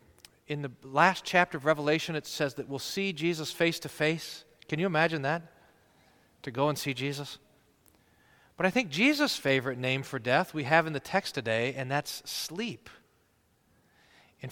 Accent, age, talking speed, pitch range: American, 40-59, 175 wpm, 140-185 Hz